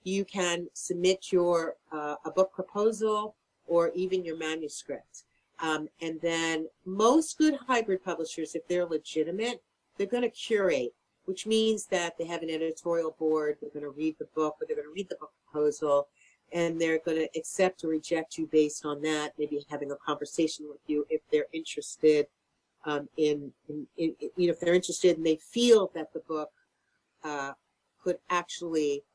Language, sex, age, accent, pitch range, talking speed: English, female, 50-69, American, 155-200 Hz, 180 wpm